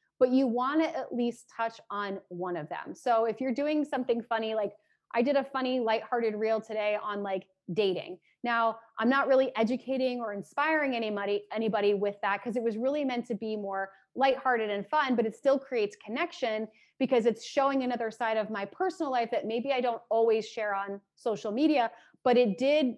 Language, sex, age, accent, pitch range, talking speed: English, female, 30-49, American, 215-270 Hz, 200 wpm